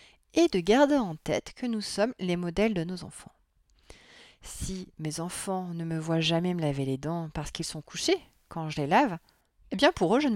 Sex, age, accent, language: female, 30-49, French, French